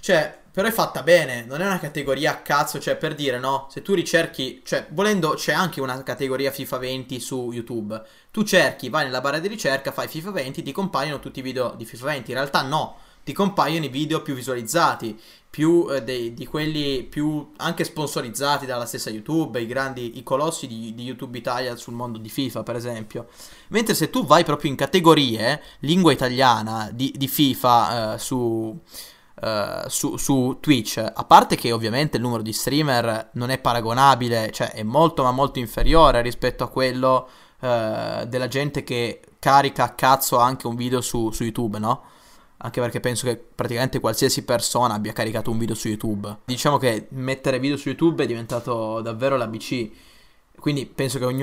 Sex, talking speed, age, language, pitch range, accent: male, 185 wpm, 20-39, Italian, 120-150 Hz, native